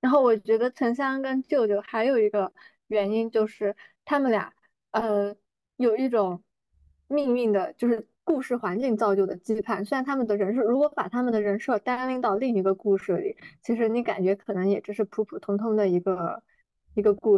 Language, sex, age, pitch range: Chinese, female, 20-39, 205-245 Hz